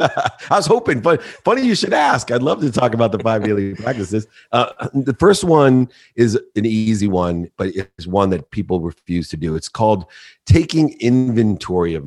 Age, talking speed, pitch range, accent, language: 40-59, 190 wpm, 90-120 Hz, American, English